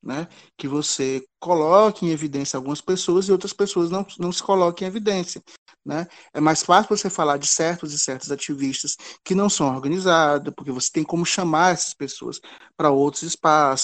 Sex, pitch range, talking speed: male, 145-195 Hz, 180 wpm